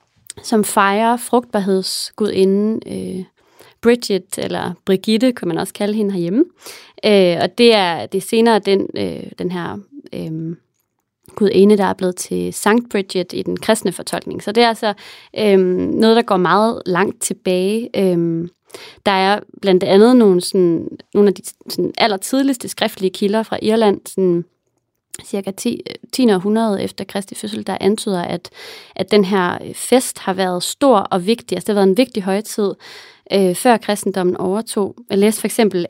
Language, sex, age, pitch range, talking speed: English, female, 30-49, 185-225 Hz, 145 wpm